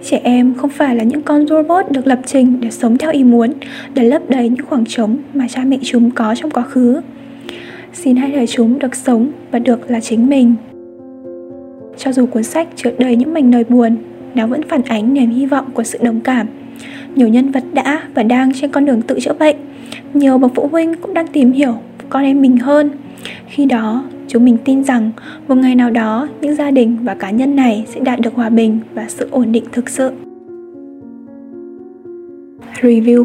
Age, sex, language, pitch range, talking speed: 10-29, female, Vietnamese, 235-275 Hz, 210 wpm